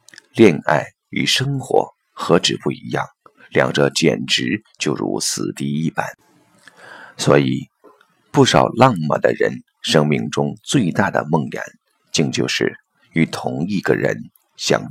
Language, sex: Chinese, male